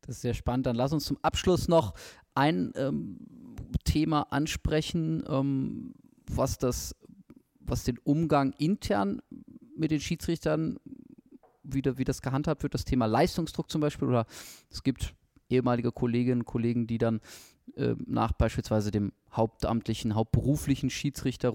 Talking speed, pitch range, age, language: 135 wpm, 105-135 Hz, 20-39, German